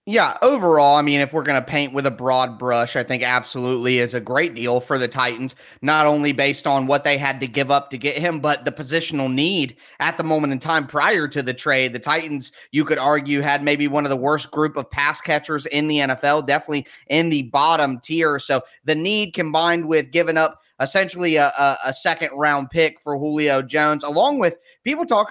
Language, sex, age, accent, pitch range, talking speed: English, male, 30-49, American, 135-155 Hz, 220 wpm